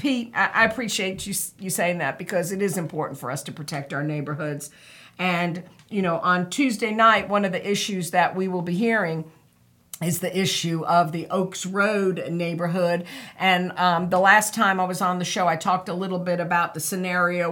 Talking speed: 200 wpm